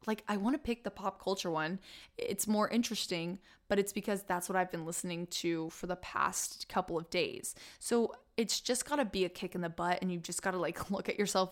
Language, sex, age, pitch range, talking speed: English, female, 20-39, 180-210 Hz, 245 wpm